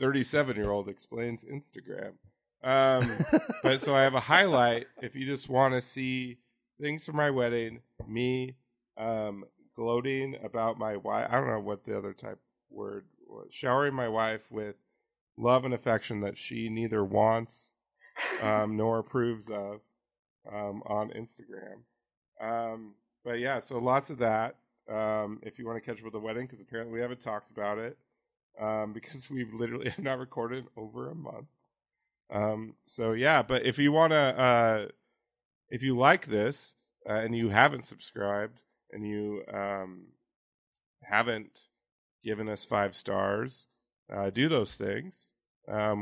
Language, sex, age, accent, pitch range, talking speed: English, male, 40-59, American, 105-130 Hz, 150 wpm